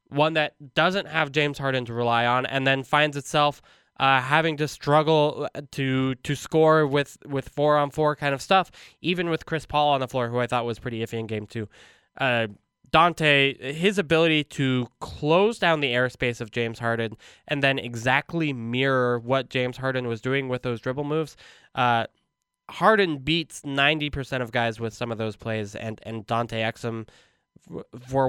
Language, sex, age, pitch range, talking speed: English, male, 10-29, 125-155 Hz, 180 wpm